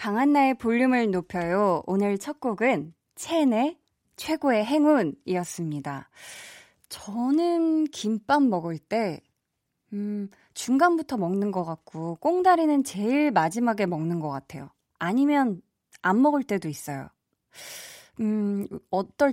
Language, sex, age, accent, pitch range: Korean, female, 20-39, native, 170-255 Hz